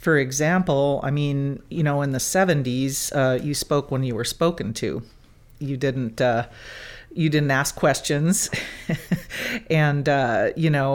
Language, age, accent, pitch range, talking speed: English, 40-59, American, 135-160 Hz, 155 wpm